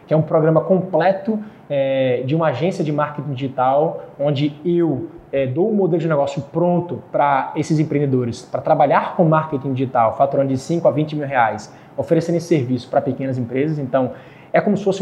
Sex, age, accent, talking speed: male, 20-39, Brazilian, 190 wpm